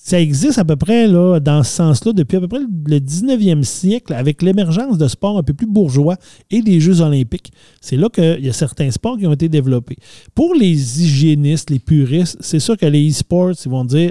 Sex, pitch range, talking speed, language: male, 135-185 Hz, 215 wpm, French